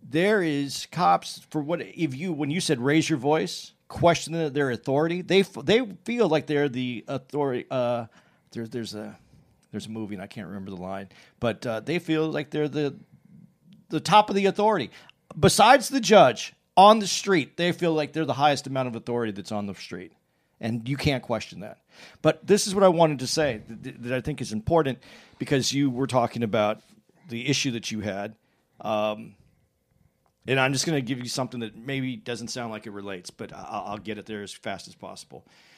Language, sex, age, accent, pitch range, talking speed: English, male, 40-59, American, 110-155 Hz, 200 wpm